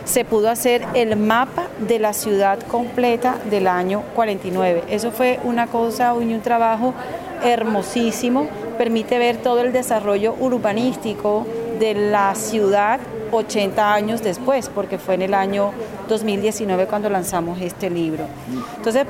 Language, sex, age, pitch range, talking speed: Spanish, female, 40-59, 200-235 Hz, 130 wpm